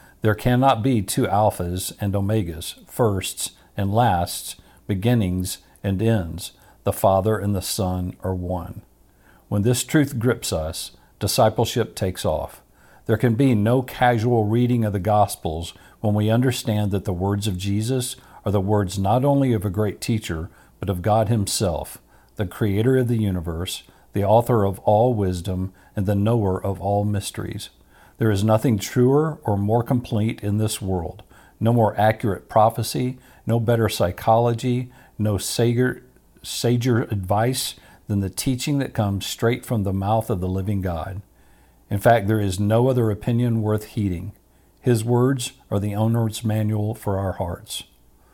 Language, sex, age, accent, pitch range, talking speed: English, male, 50-69, American, 95-120 Hz, 155 wpm